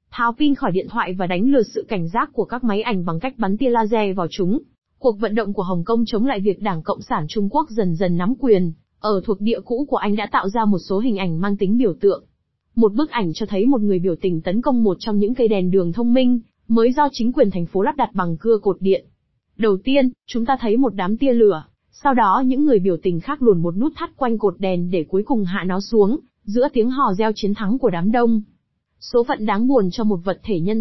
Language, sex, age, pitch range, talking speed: Vietnamese, female, 20-39, 195-250 Hz, 265 wpm